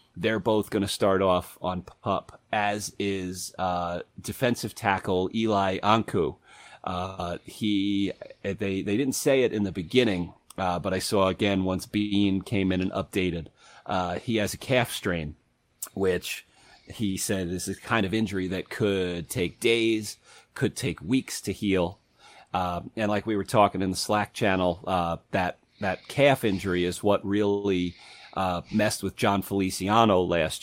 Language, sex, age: English, male, 30-49